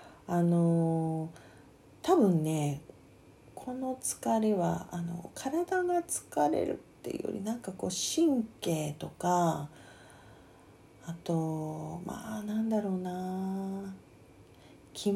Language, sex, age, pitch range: Japanese, female, 40-59, 160-225 Hz